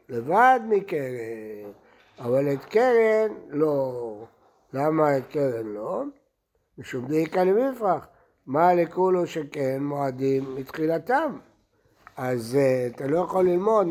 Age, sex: 60-79, male